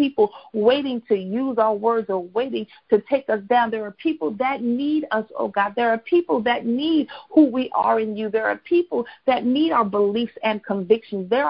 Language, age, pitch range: English, 50-69, 215-270 Hz